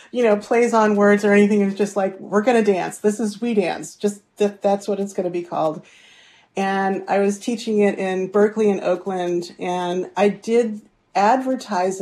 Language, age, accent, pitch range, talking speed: English, 40-59, American, 180-210 Hz, 205 wpm